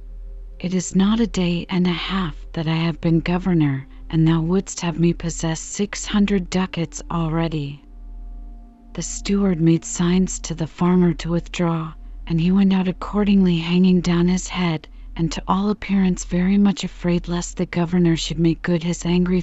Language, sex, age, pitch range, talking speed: English, female, 40-59, 165-185 Hz, 175 wpm